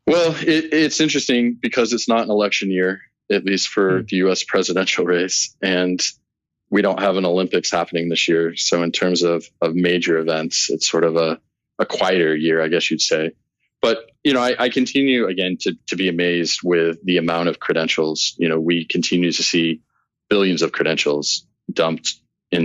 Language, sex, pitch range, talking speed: English, male, 80-95 Hz, 185 wpm